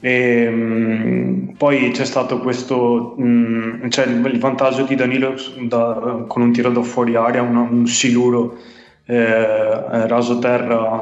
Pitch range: 115-125 Hz